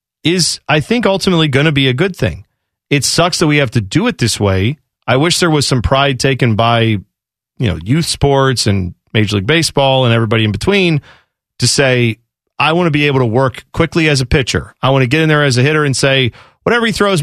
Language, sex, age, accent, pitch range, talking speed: English, male, 40-59, American, 115-160 Hz, 235 wpm